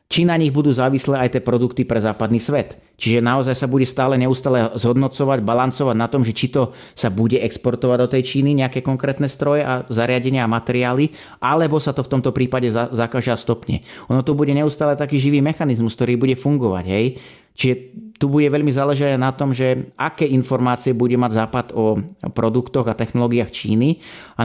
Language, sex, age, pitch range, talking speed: Slovak, male, 30-49, 115-140 Hz, 185 wpm